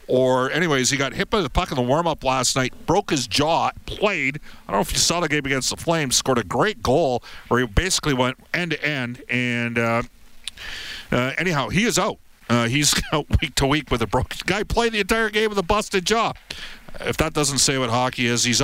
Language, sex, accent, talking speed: English, male, American, 220 wpm